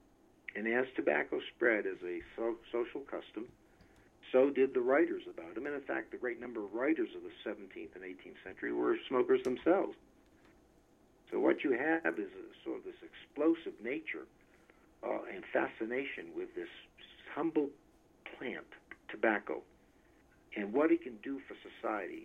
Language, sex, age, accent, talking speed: English, male, 60-79, American, 155 wpm